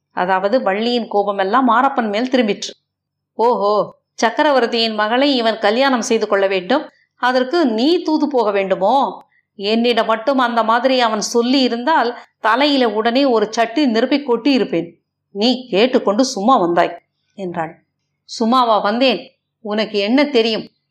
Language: Tamil